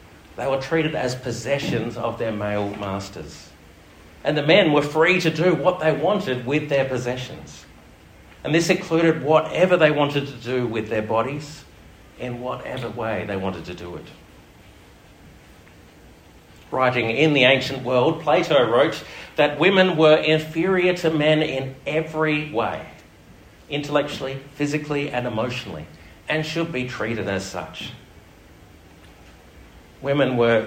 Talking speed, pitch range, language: 135 wpm, 105-150 Hz, English